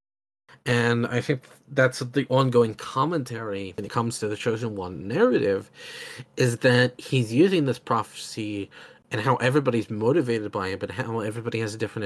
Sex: male